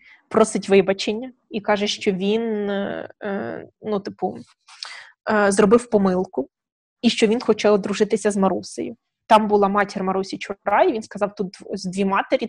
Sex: female